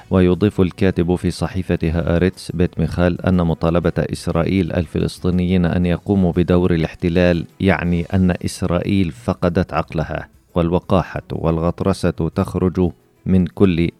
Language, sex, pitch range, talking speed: Arabic, male, 80-90 Hz, 105 wpm